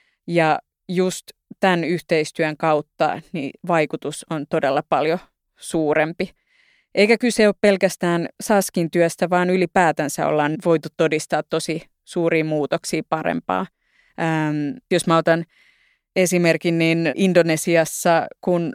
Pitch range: 160-185 Hz